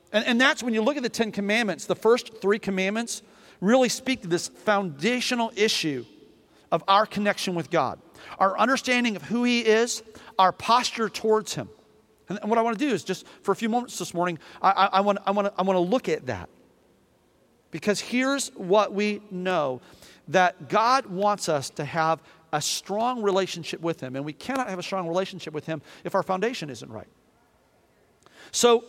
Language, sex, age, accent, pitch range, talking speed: English, male, 40-59, American, 180-230 Hz, 190 wpm